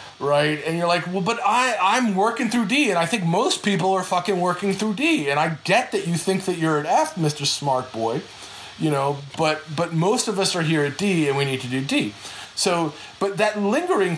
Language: English